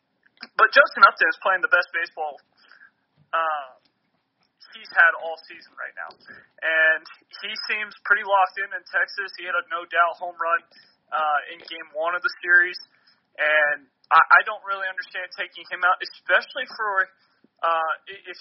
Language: English